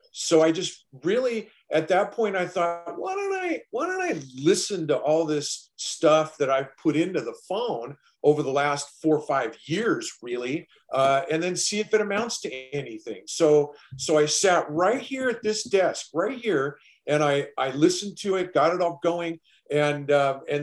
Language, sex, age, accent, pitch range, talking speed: English, male, 50-69, American, 145-180 Hz, 195 wpm